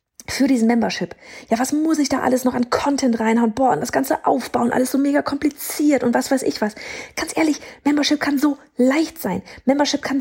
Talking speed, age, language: 210 wpm, 30-49, German